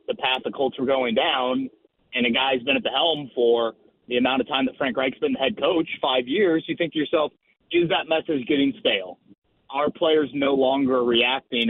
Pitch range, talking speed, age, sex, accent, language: 125-160 Hz, 215 wpm, 30-49, male, American, English